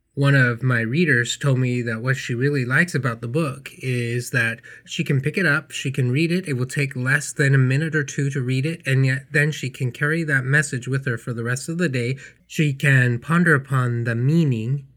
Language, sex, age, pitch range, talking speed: English, male, 30-49, 125-150 Hz, 235 wpm